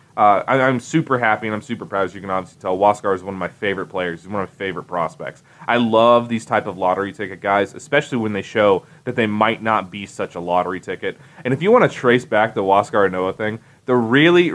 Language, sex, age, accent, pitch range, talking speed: English, male, 20-39, American, 105-145 Hz, 245 wpm